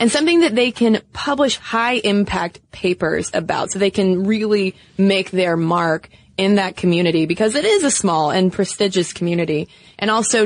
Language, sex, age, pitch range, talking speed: English, female, 20-39, 180-230 Hz, 170 wpm